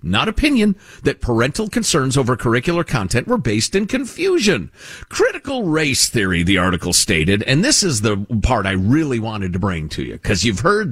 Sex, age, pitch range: male, 50-69, 115-185 Hz